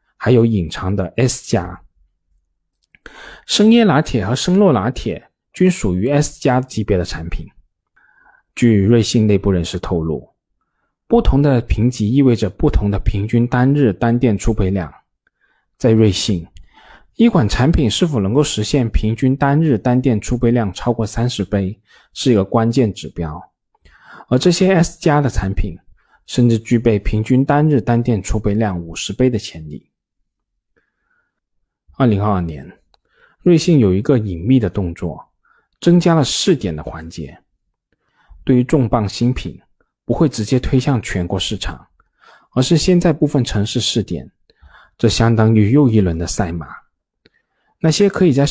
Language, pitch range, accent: Chinese, 95-130 Hz, native